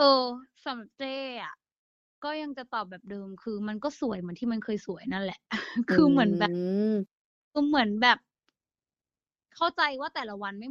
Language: Thai